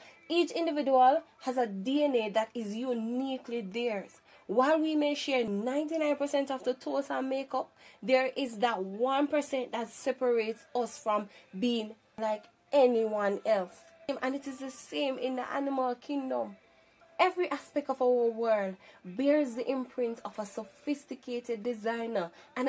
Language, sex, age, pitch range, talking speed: English, female, 10-29, 230-280 Hz, 140 wpm